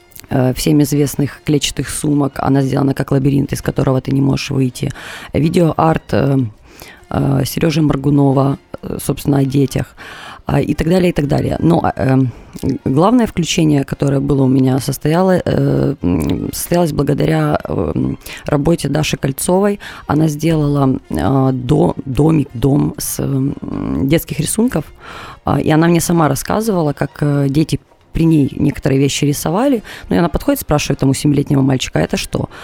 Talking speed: 125 wpm